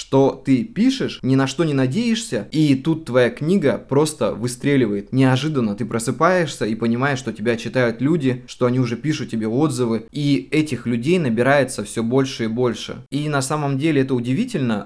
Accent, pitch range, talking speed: native, 110-135 Hz, 175 wpm